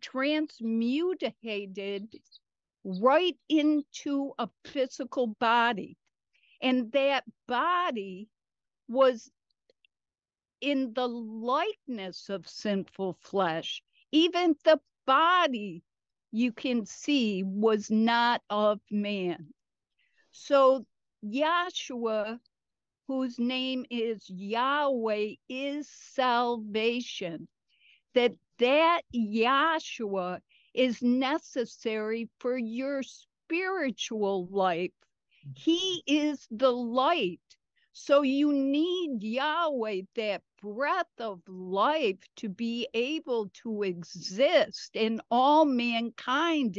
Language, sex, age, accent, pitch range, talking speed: English, female, 50-69, American, 215-280 Hz, 80 wpm